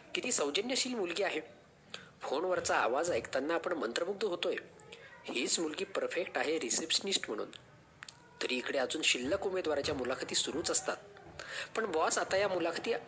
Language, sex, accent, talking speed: Marathi, male, native, 100 wpm